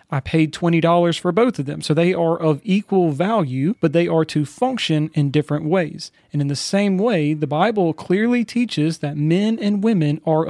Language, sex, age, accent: English, male, 30-49, American